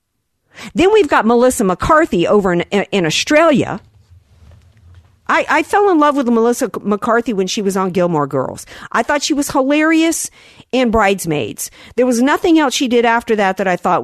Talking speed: 180 wpm